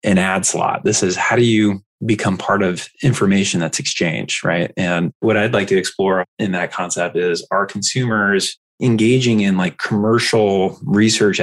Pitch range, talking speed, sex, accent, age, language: 100-120 Hz, 170 wpm, male, American, 20-39, English